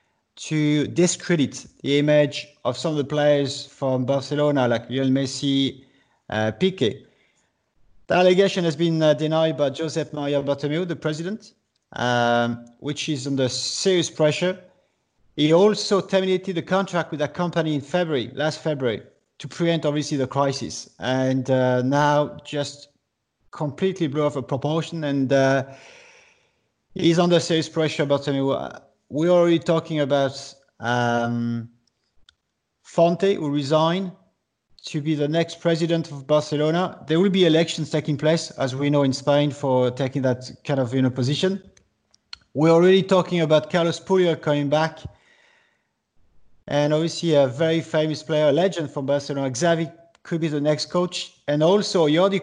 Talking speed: 145 wpm